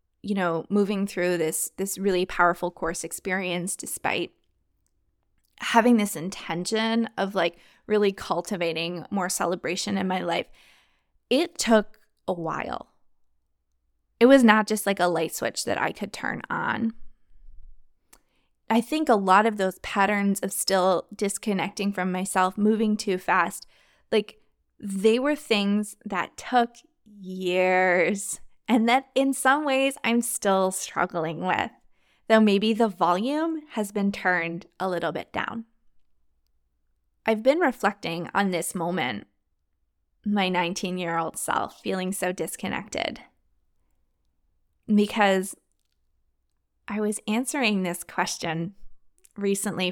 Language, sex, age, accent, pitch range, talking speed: English, female, 20-39, American, 165-215 Hz, 120 wpm